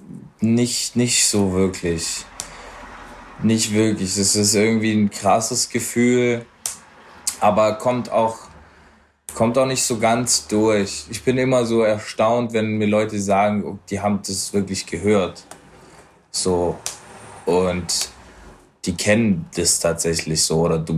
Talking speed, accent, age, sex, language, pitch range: 125 wpm, German, 20-39, male, German, 95-115 Hz